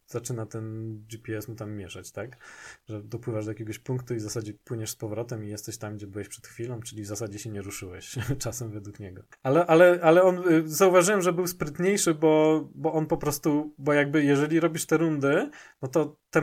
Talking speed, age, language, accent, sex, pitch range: 205 wpm, 20-39, Polish, native, male, 120-160 Hz